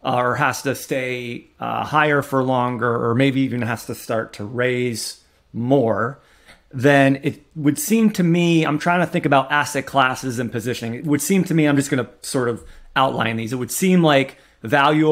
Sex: male